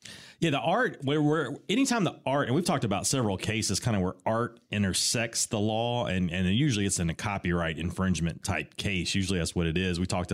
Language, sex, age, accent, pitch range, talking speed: English, male, 30-49, American, 90-110 Hz, 220 wpm